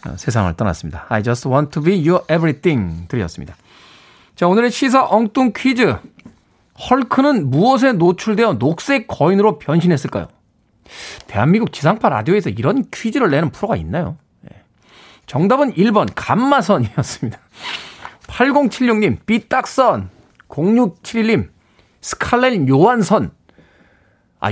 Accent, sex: native, male